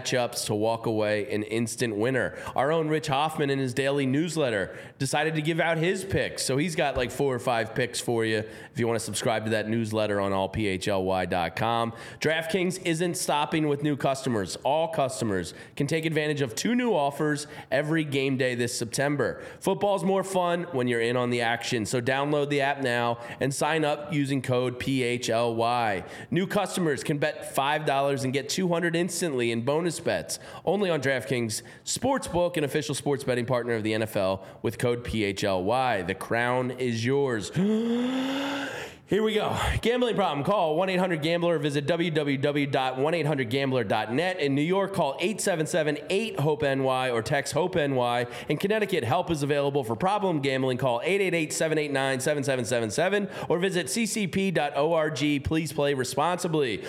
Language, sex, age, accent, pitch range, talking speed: English, male, 20-39, American, 125-175 Hz, 155 wpm